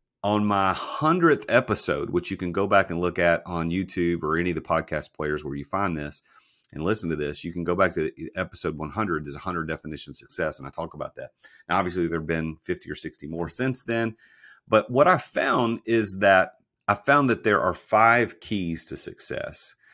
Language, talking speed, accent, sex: English, 215 wpm, American, male